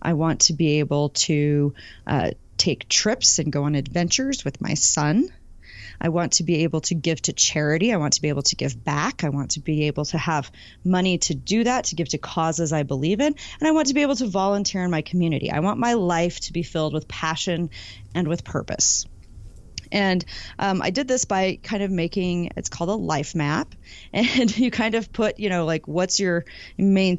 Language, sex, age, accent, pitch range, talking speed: English, female, 30-49, American, 150-195 Hz, 220 wpm